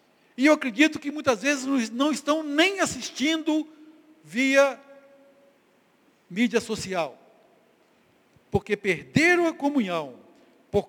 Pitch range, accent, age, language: 195-275 Hz, Brazilian, 60-79, Portuguese